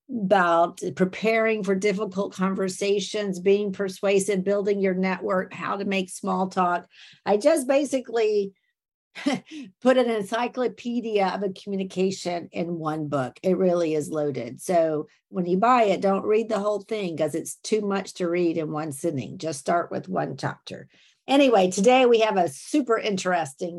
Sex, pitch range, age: female, 185-225 Hz, 50-69